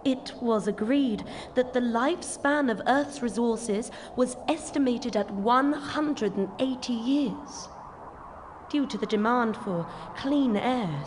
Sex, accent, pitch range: female, British, 225-285 Hz